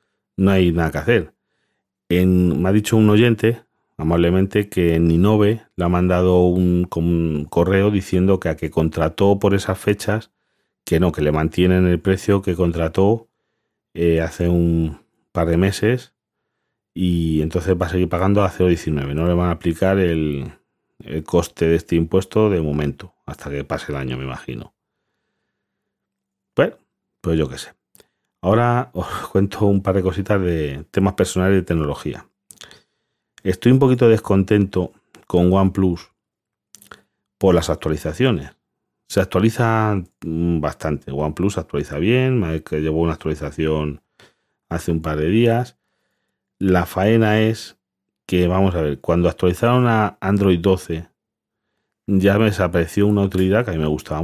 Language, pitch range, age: Spanish, 80-100 Hz, 40-59